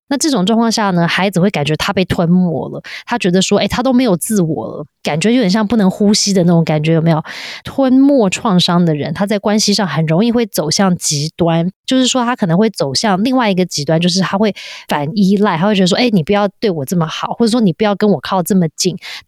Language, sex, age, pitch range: Chinese, female, 20-39, 165-215 Hz